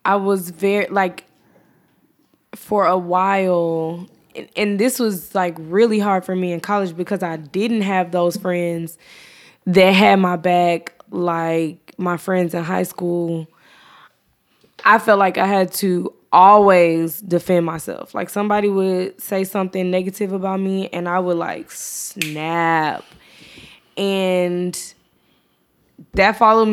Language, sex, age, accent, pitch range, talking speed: English, female, 10-29, American, 170-200 Hz, 130 wpm